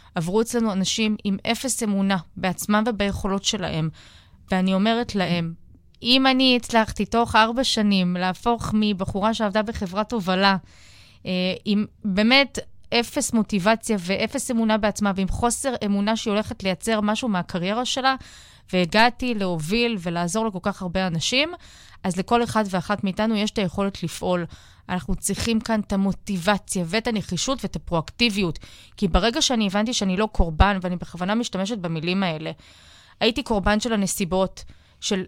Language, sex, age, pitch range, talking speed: Hebrew, female, 20-39, 185-225 Hz, 140 wpm